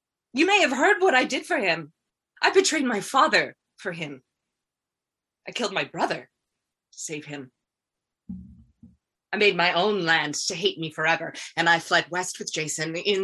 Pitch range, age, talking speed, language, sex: 145-210 Hz, 20-39, 170 wpm, English, female